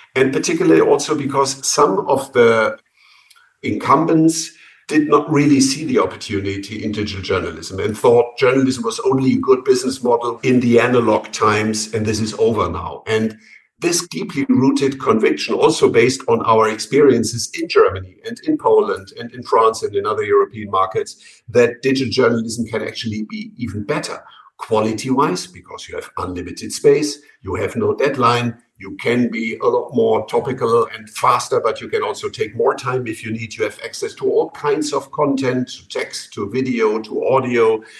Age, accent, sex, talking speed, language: 50-69, German, male, 170 wpm, English